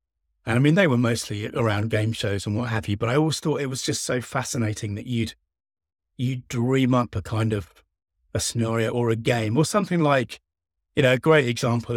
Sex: male